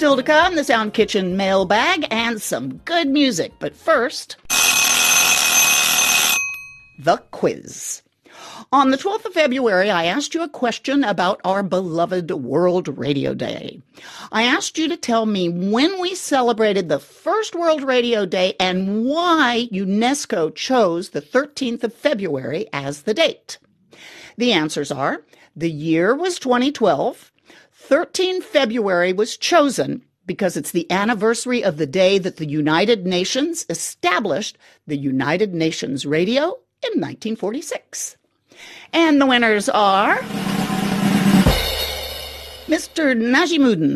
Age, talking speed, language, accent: 50-69, 125 wpm, English, American